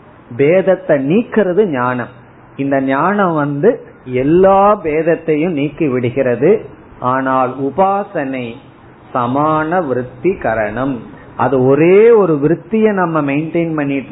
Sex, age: male, 30-49